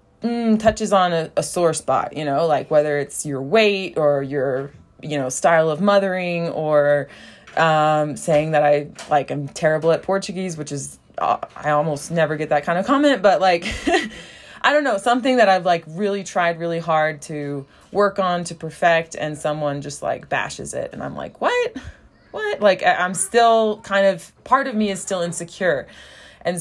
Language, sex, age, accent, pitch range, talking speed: English, female, 20-39, American, 150-190 Hz, 190 wpm